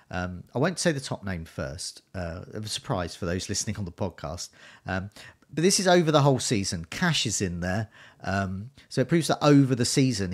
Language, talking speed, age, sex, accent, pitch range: English, 220 wpm, 40-59, male, British, 90-120 Hz